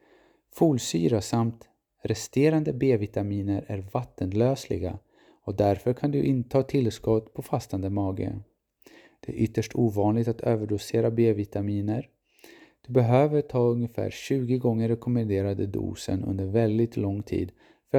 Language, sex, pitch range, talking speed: Swedish, male, 100-130 Hz, 120 wpm